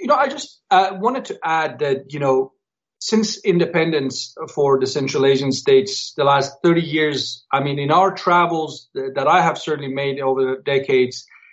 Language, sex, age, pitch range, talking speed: English, male, 40-59, 135-180 Hz, 180 wpm